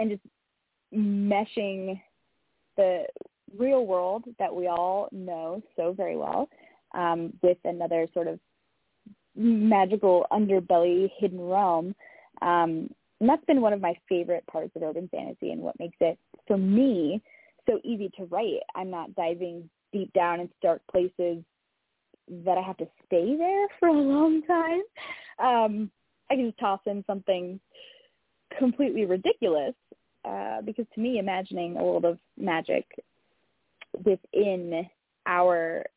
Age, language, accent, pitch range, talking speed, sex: 20-39, English, American, 175-240 Hz, 135 wpm, female